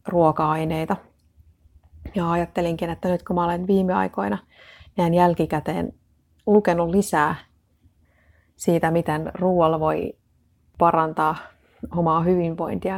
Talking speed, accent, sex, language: 95 wpm, native, female, Finnish